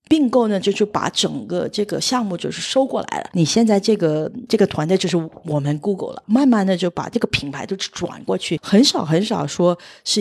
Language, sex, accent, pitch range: Chinese, female, native, 170-230 Hz